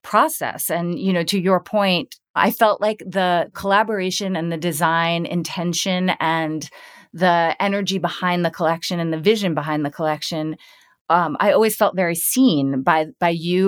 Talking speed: 160 wpm